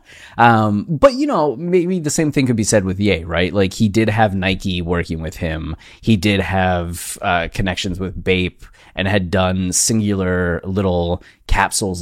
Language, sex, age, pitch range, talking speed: English, male, 30-49, 90-110 Hz, 175 wpm